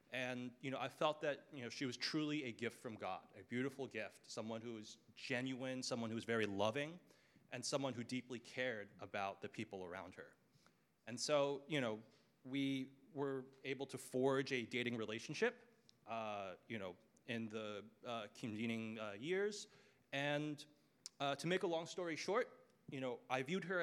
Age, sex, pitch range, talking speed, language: 30-49, male, 115-145 Hz, 175 wpm, English